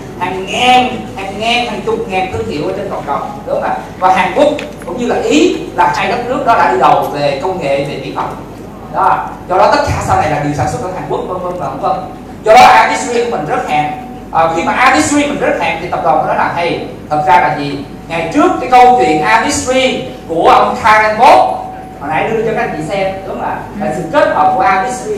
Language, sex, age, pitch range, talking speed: Vietnamese, male, 20-39, 185-275 Hz, 250 wpm